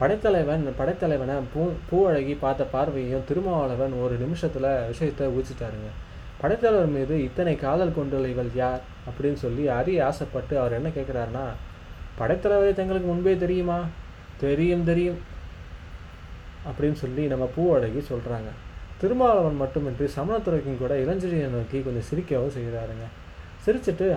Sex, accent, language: male, native, Tamil